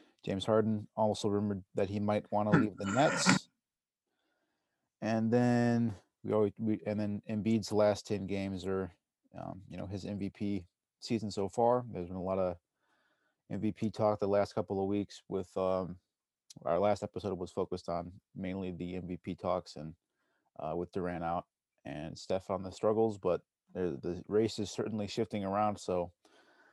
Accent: American